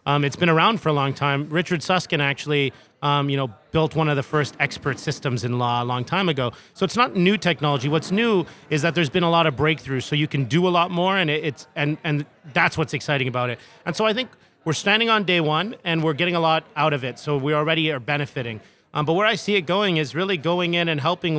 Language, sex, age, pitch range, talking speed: English, male, 30-49, 150-170 Hz, 260 wpm